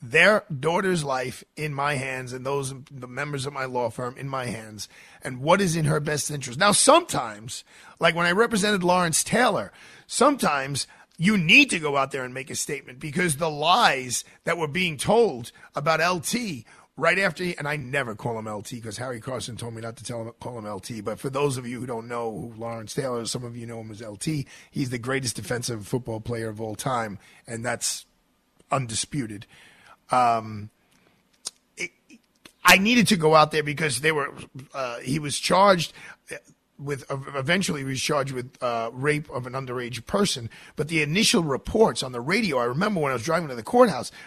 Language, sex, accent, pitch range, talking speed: English, male, American, 125-180 Hz, 195 wpm